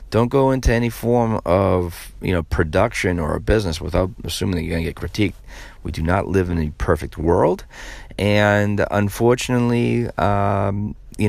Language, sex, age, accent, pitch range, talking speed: English, male, 40-59, American, 80-110 Hz, 165 wpm